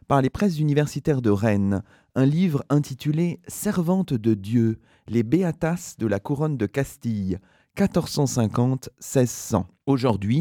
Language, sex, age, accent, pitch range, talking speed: French, male, 30-49, French, 100-145 Hz, 140 wpm